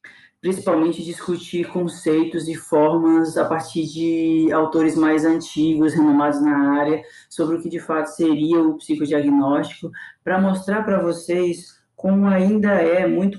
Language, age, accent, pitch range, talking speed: Portuguese, 20-39, Brazilian, 150-180 Hz, 135 wpm